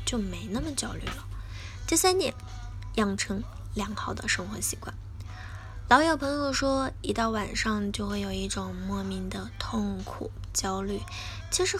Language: Chinese